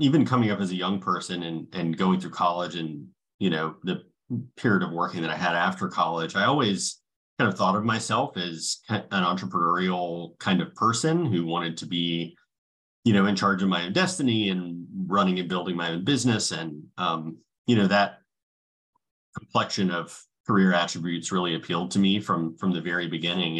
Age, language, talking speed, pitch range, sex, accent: 30-49, English, 190 wpm, 85-100 Hz, male, American